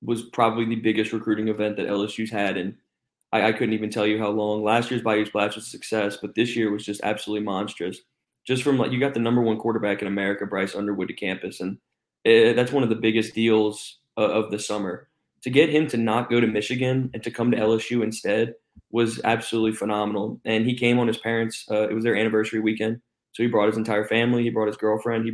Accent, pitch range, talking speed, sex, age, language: American, 105-115 Hz, 230 wpm, male, 20-39, English